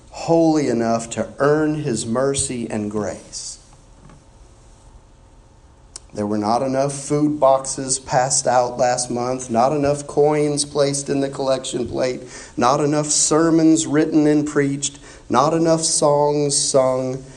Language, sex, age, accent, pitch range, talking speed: English, male, 40-59, American, 105-140 Hz, 125 wpm